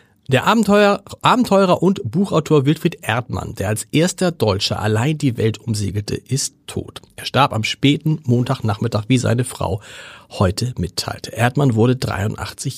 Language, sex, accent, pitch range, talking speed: German, male, German, 115-155 Hz, 135 wpm